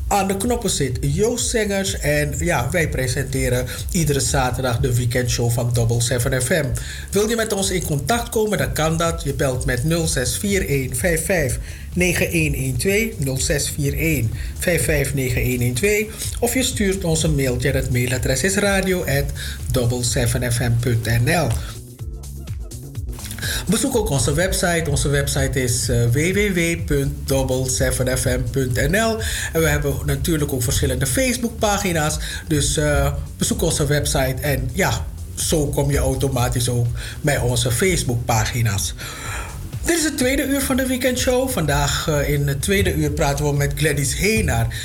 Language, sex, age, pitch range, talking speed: Dutch, male, 50-69, 125-185 Hz, 125 wpm